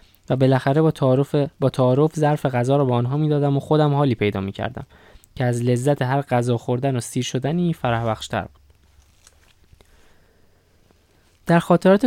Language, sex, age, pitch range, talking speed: Persian, male, 10-29, 110-155 Hz, 160 wpm